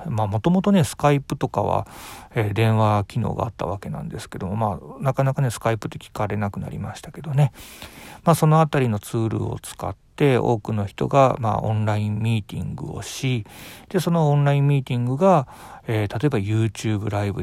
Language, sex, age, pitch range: Japanese, male, 40-59, 105-140 Hz